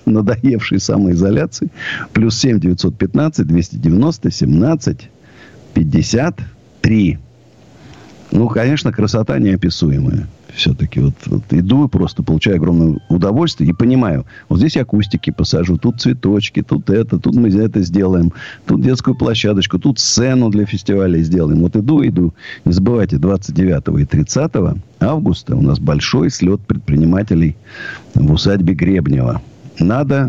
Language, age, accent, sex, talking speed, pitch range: Russian, 50-69, native, male, 125 wpm, 90-125 Hz